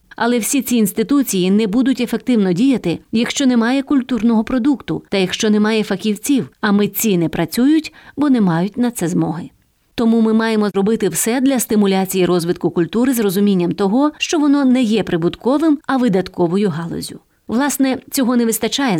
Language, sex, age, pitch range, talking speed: English, female, 30-49, 195-250 Hz, 160 wpm